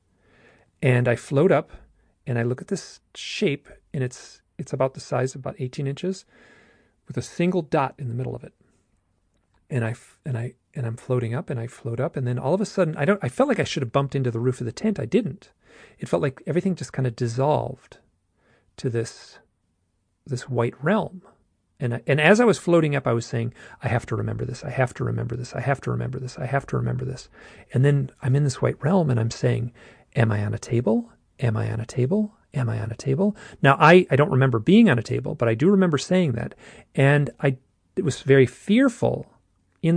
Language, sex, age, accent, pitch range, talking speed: English, male, 40-59, American, 115-145 Hz, 235 wpm